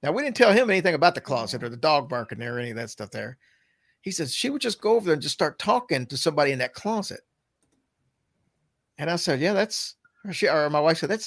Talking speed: 260 wpm